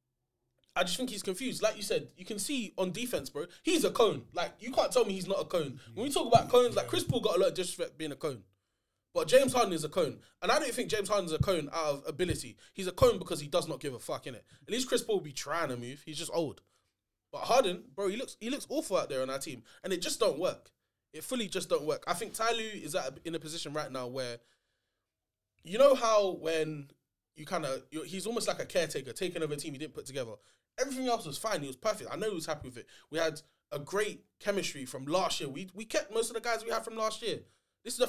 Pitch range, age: 130-205 Hz, 20-39